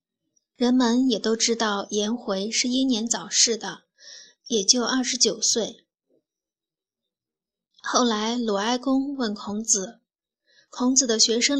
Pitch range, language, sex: 210-250 Hz, Chinese, female